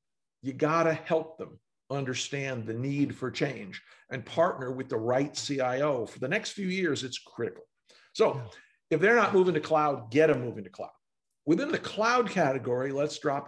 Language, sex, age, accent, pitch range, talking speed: English, male, 50-69, American, 135-175 Hz, 185 wpm